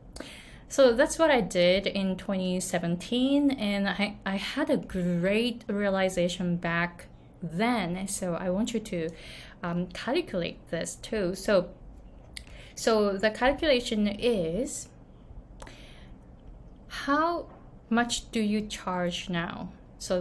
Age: 20-39